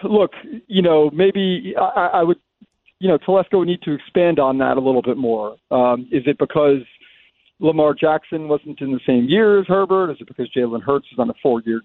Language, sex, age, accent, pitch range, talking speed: English, male, 40-59, American, 140-185 Hz, 215 wpm